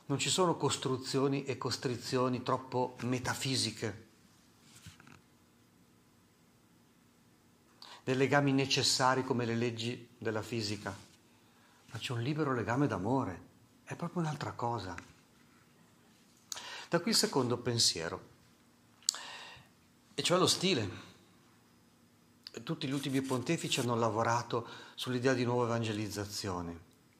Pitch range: 115-150 Hz